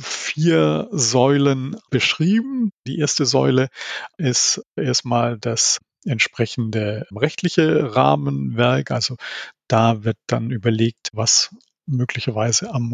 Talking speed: 95 wpm